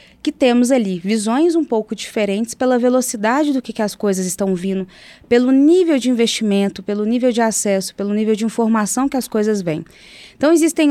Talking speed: 185 wpm